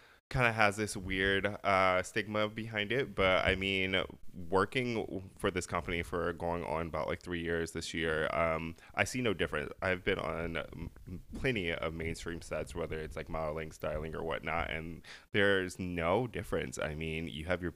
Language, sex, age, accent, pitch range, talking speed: English, male, 20-39, American, 85-100 Hz, 180 wpm